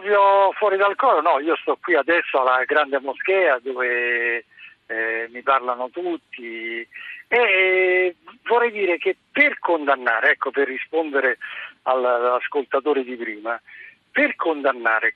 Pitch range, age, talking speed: 135-220 Hz, 50-69, 120 wpm